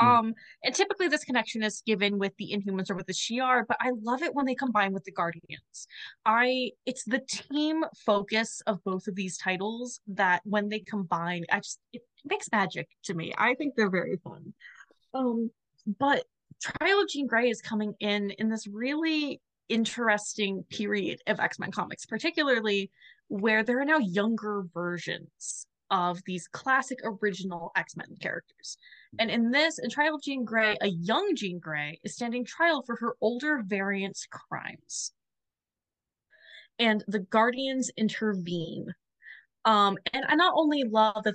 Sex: female